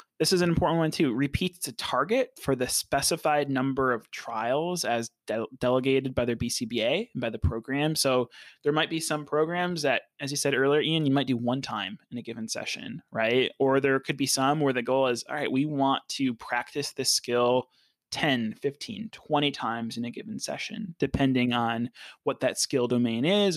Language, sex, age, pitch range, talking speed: English, male, 20-39, 120-150 Hz, 200 wpm